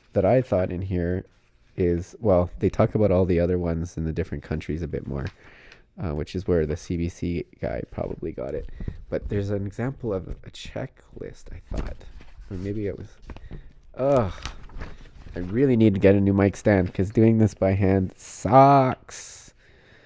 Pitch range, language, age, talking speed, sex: 85-105 Hz, English, 20-39, 180 wpm, male